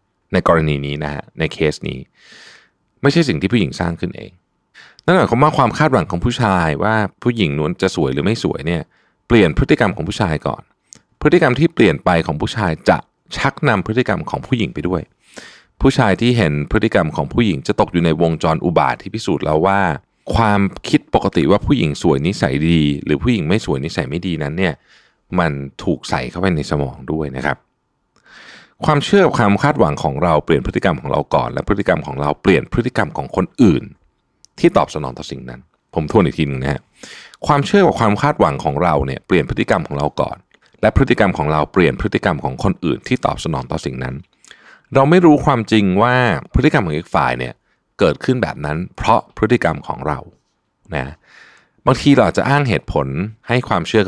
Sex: male